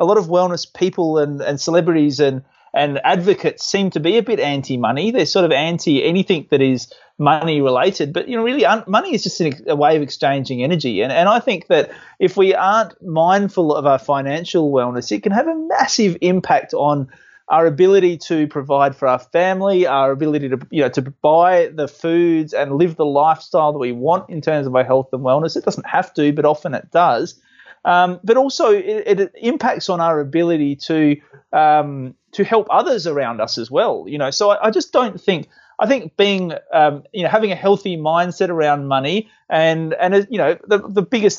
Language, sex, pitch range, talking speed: English, male, 140-190 Hz, 200 wpm